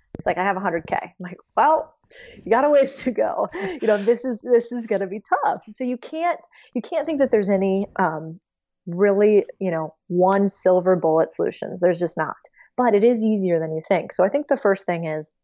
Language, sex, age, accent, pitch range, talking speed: English, female, 20-39, American, 170-210 Hz, 235 wpm